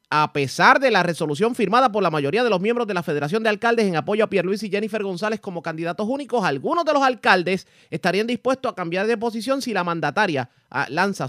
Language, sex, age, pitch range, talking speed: Spanish, male, 30-49, 145-210 Hz, 225 wpm